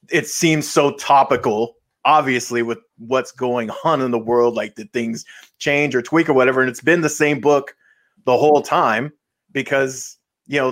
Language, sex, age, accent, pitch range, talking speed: English, male, 30-49, American, 120-150 Hz, 180 wpm